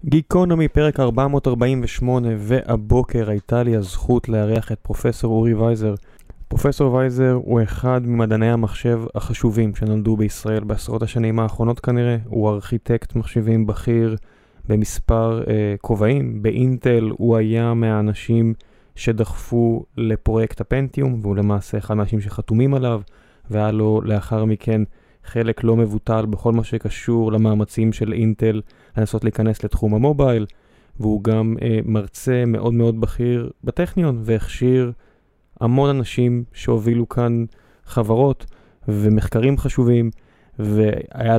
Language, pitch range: Hebrew, 110-125 Hz